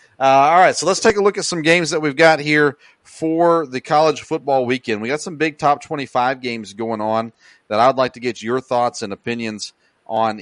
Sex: male